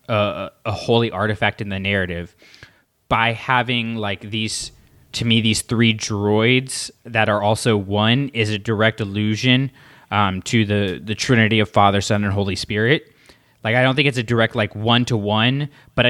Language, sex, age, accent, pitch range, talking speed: English, male, 20-39, American, 100-120 Hz, 170 wpm